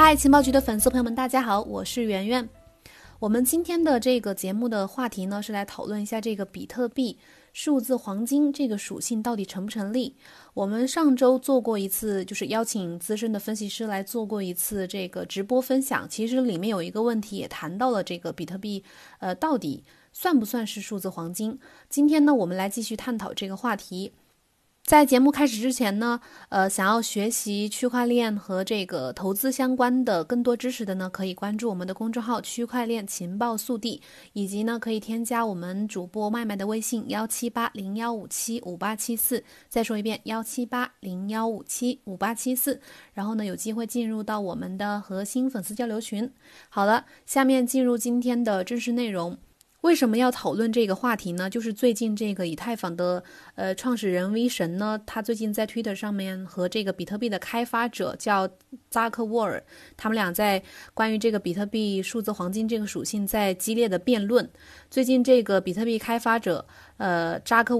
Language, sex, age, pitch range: Chinese, female, 20-39, 200-245 Hz